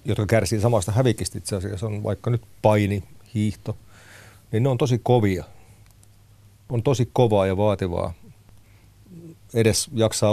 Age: 40-59